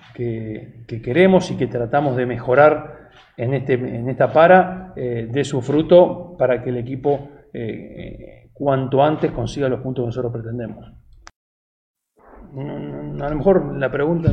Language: Spanish